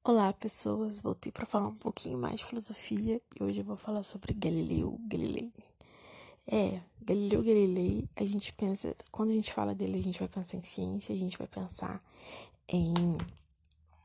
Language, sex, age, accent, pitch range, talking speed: Portuguese, female, 20-39, Brazilian, 180-220 Hz, 170 wpm